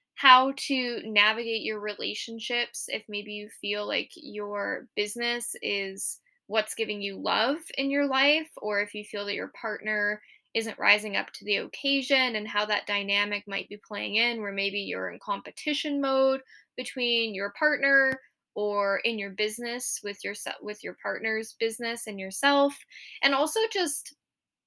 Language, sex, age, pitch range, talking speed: English, female, 10-29, 205-260 Hz, 155 wpm